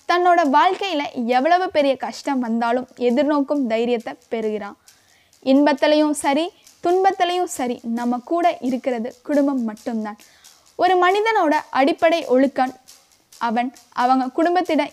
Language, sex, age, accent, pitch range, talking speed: Tamil, female, 20-39, native, 245-305 Hz, 100 wpm